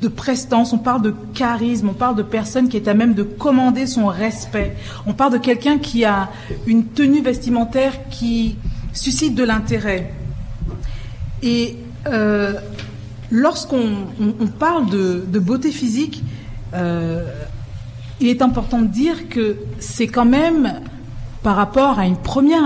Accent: French